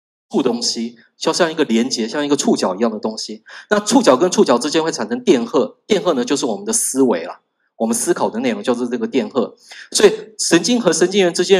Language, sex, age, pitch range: Chinese, male, 20-39, 120-165 Hz